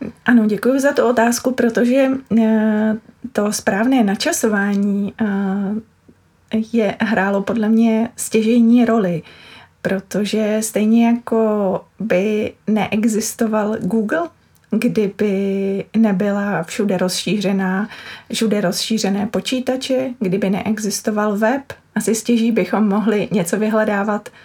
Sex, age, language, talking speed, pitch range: female, 30-49, Czech, 90 wpm, 180-225 Hz